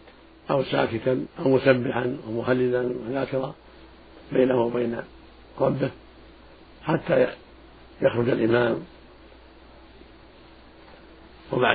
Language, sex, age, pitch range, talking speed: Arabic, male, 50-69, 120-135 Hz, 70 wpm